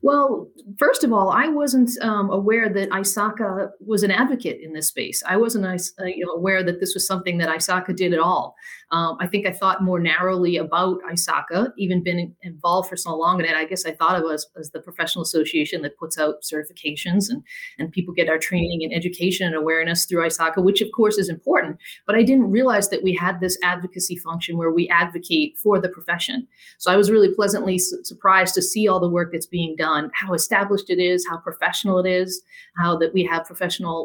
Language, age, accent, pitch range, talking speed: English, 30-49, American, 170-200 Hz, 215 wpm